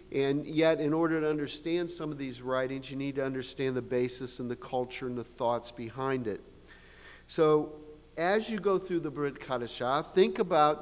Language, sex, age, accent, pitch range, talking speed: English, male, 50-69, American, 115-160 Hz, 190 wpm